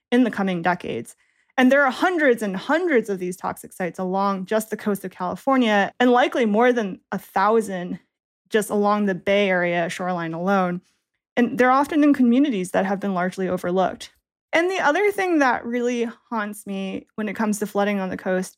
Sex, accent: female, American